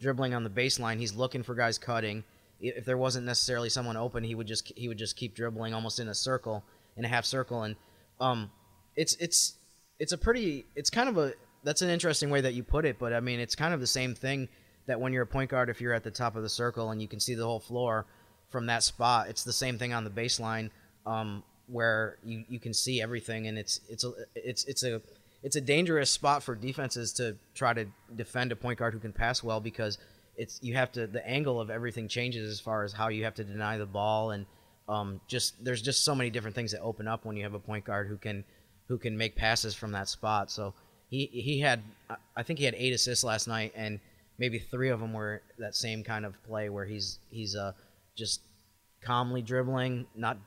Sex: male